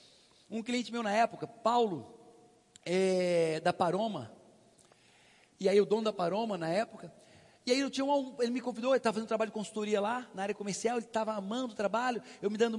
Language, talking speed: English, 200 wpm